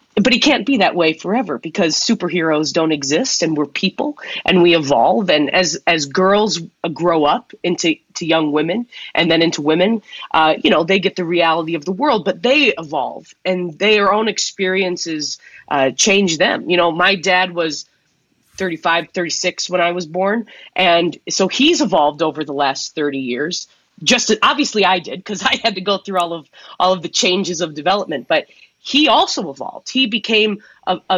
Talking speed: 185 wpm